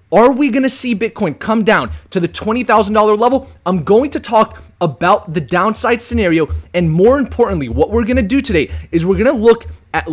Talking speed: 220 wpm